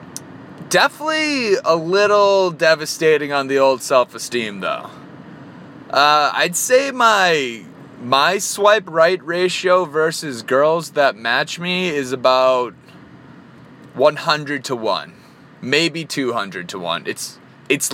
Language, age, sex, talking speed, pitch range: English, 30-49, male, 115 wpm, 140-195 Hz